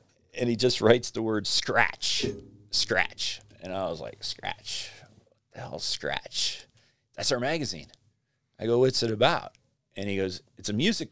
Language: English